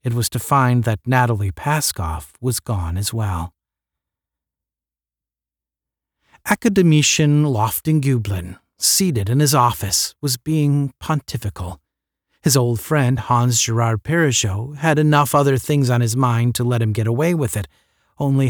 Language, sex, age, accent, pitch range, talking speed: English, male, 40-59, American, 100-145 Hz, 130 wpm